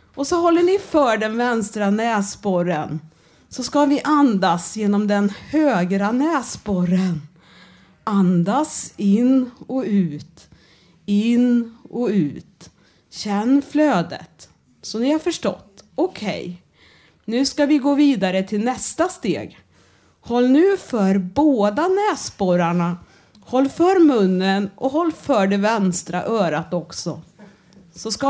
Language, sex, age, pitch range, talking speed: Swedish, female, 40-59, 180-280 Hz, 115 wpm